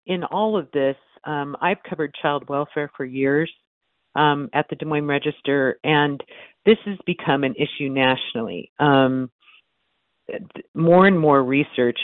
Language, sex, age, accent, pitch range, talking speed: English, female, 50-69, American, 120-140 Hz, 145 wpm